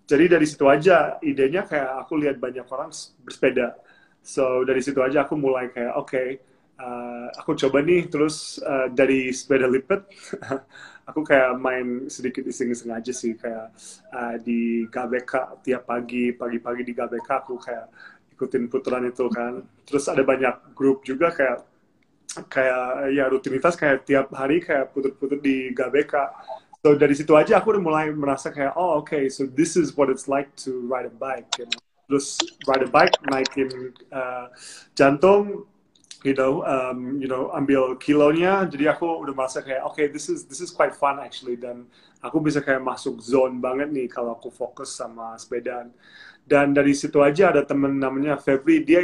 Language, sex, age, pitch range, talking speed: Indonesian, male, 30-49, 125-145 Hz, 175 wpm